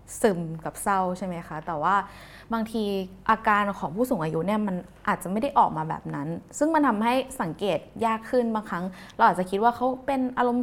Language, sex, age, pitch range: Thai, female, 20-39, 185-245 Hz